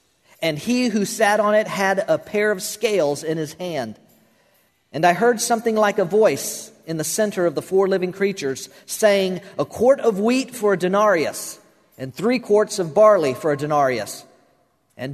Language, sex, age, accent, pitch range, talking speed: English, male, 50-69, American, 155-210 Hz, 180 wpm